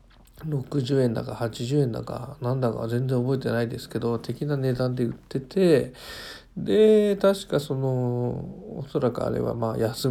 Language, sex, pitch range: Japanese, male, 115-140 Hz